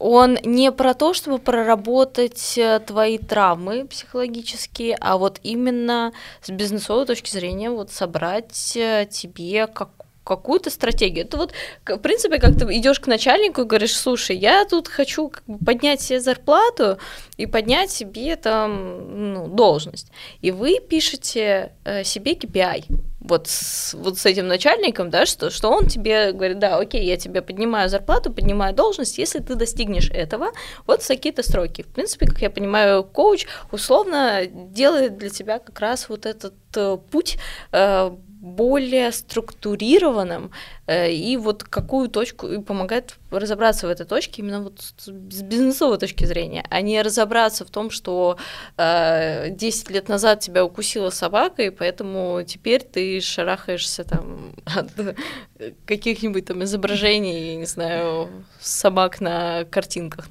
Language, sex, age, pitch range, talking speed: Russian, female, 20-39, 190-250 Hz, 140 wpm